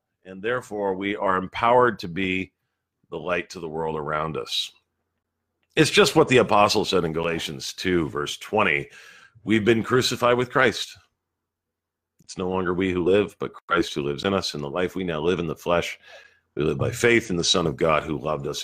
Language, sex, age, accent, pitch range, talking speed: English, male, 50-69, American, 85-135 Hz, 205 wpm